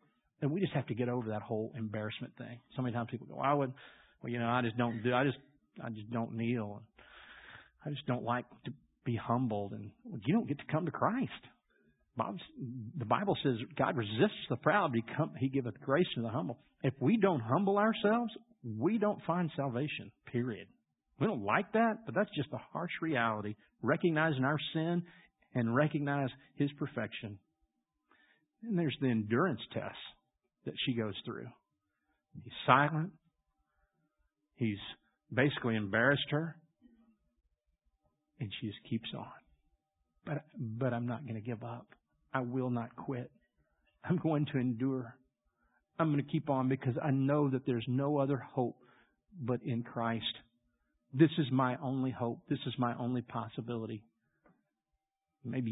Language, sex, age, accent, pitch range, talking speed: English, male, 50-69, American, 115-145 Hz, 165 wpm